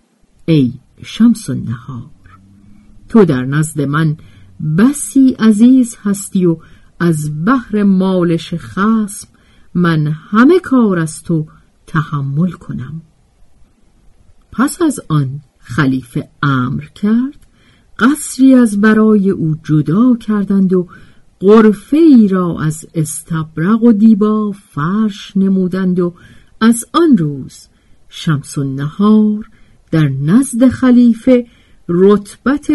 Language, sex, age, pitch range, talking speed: Persian, female, 50-69, 155-230 Hz, 100 wpm